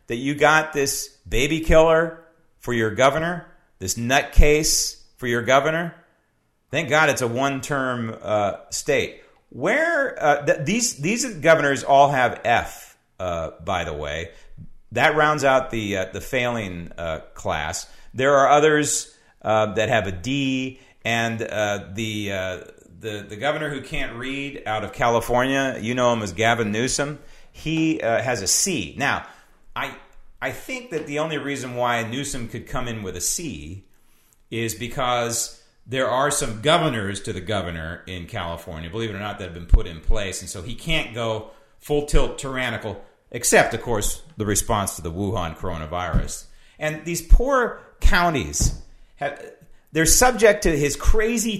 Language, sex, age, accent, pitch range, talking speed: English, male, 40-59, American, 105-155 Hz, 160 wpm